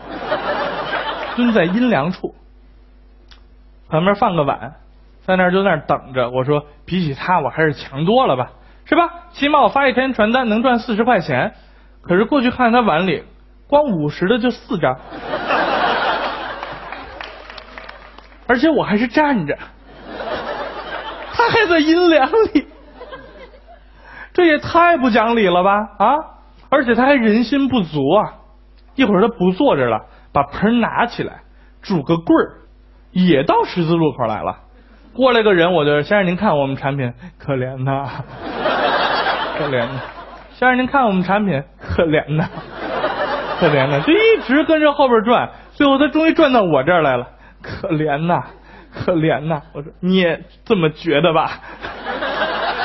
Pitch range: 160-270 Hz